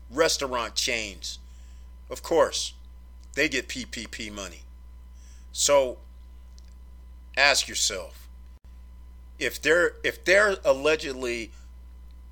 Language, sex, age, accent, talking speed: English, male, 50-69, American, 75 wpm